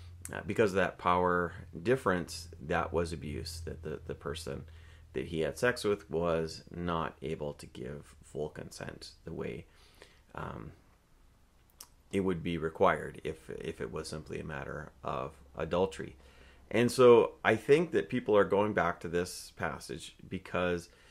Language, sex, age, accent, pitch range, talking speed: English, male, 30-49, American, 80-100 Hz, 155 wpm